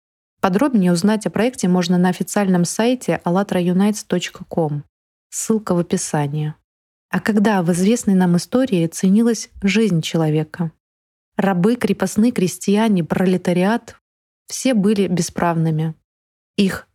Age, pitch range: 20-39, 175-210 Hz